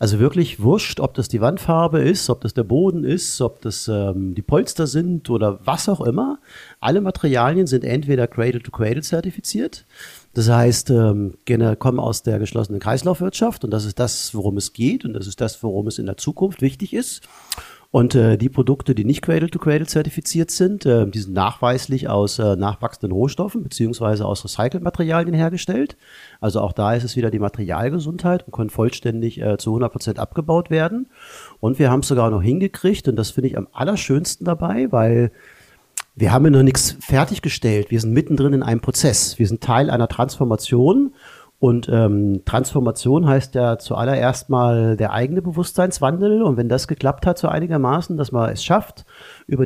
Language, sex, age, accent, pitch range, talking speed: German, male, 40-59, German, 115-150 Hz, 180 wpm